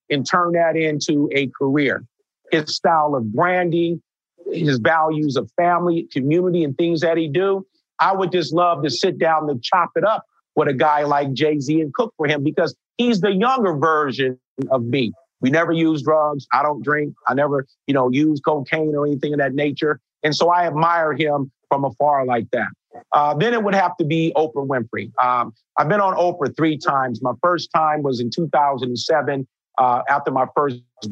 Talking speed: 195 wpm